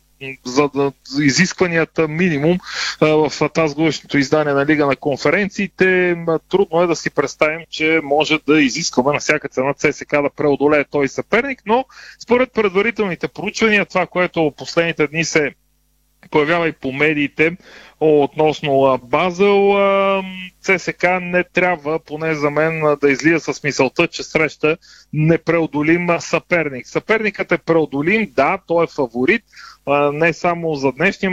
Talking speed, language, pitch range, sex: 140 wpm, Bulgarian, 145-175 Hz, male